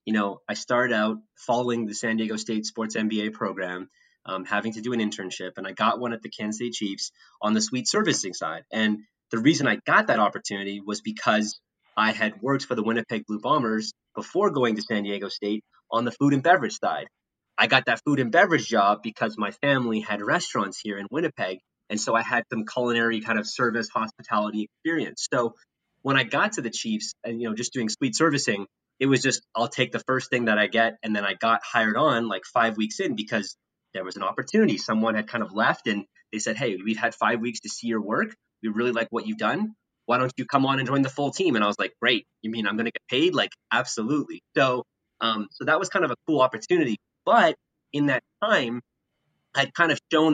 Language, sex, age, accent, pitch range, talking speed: English, male, 30-49, American, 105-130 Hz, 230 wpm